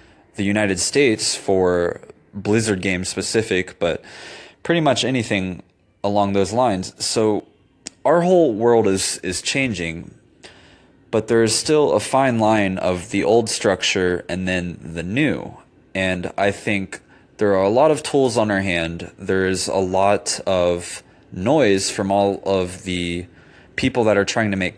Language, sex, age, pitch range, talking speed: English, male, 20-39, 90-110 Hz, 155 wpm